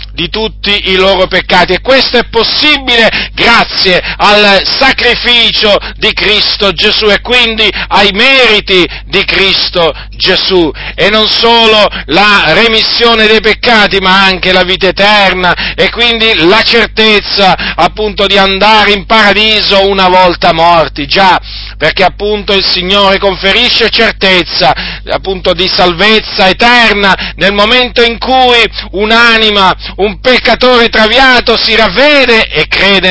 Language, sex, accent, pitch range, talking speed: Italian, male, native, 185-225 Hz, 125 wpm